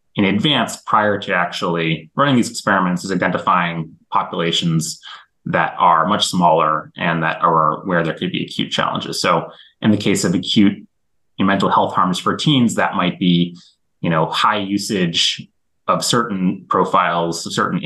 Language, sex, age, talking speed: English, male, 30-49, 155 wpm